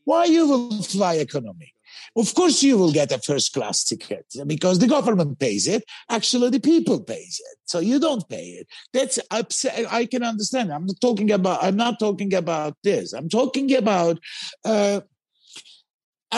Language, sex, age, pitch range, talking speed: Turkish, male, 50-69, 185-255 Hz, 170 wpm